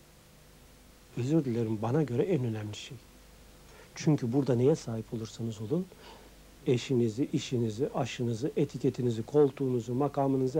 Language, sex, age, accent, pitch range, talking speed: Turkish, male, 60-79, native, 120-205 Hz, 110 wpm